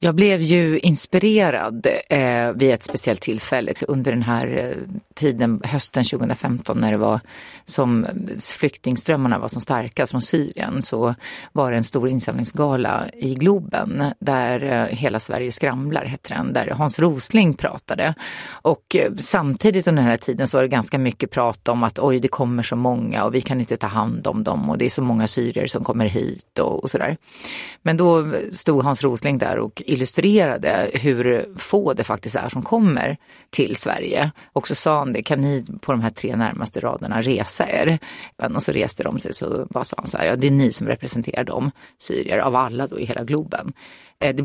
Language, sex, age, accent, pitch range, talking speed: Swedish, female, 30-49, native, 120-155 Hz, 195 wpm